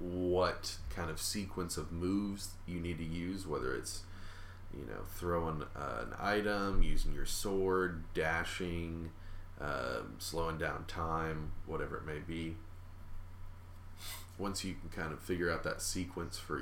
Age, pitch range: 30-49, 80-90 Hz